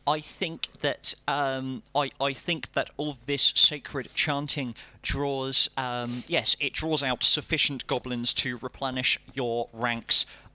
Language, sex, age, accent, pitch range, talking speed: English, male, 30-49, British, 120-140 Hz, 135 wpm